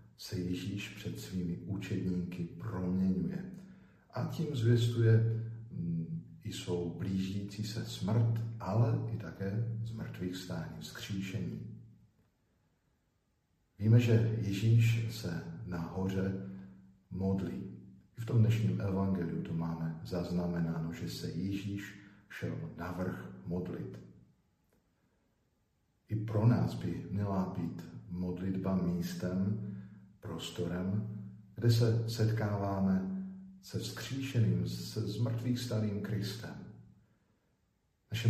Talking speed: 95 wpm